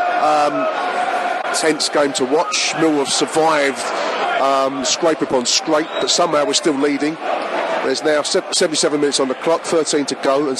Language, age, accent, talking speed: English, 30-49, British, 160 wpm